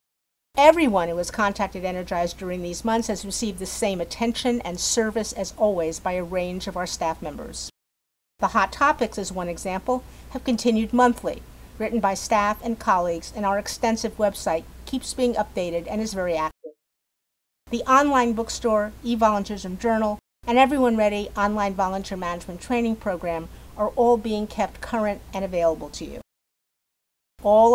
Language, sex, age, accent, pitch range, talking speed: English, female, 50-69, American, 180-230 Hz, 155 wpm